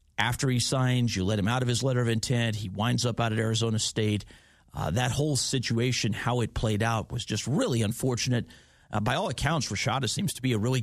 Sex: male